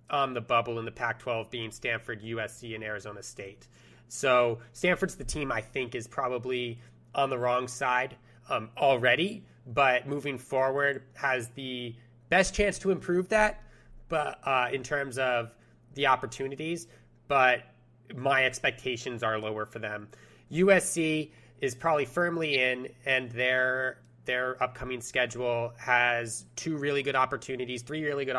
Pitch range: 120-135 Hz